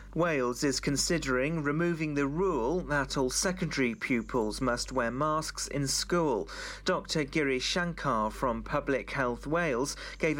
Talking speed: 125 wpm